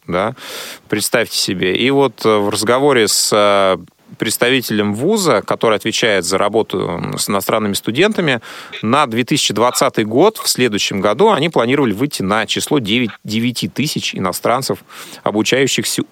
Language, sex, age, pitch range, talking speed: Russian, male, 30-49, 100-130 Hz, 120 wpm